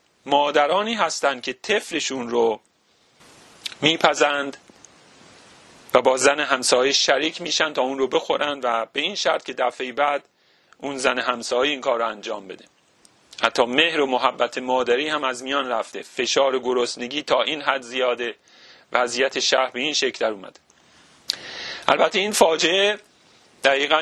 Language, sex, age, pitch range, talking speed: Persian, male, 40-59, 130-165 Hz, 135 wpm